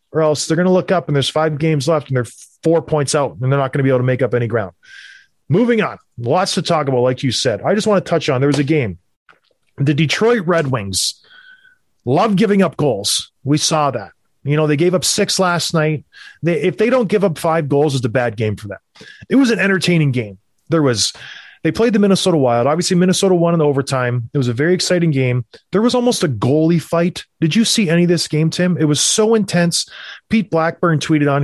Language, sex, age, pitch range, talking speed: English, male, 30-49, 135-180 Hz, 240 wpm